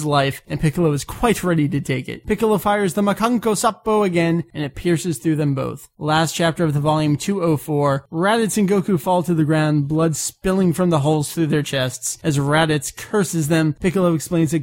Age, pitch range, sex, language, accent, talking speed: 20-39, 155-210 Hz, male, English, American, 200 wpm